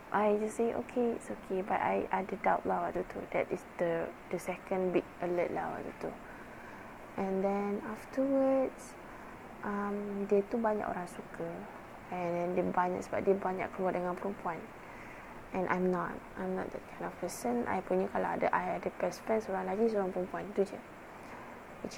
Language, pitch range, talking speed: Malay, 180-215 Hz, 185 wpm